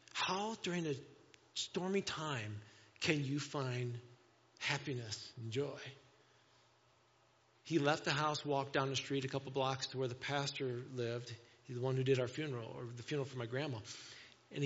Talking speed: 170 wpm